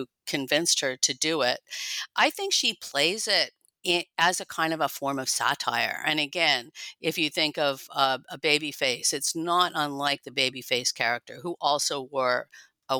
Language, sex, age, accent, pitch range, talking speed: English, female, 50-69, American, 145-180 Hz, 180 wpm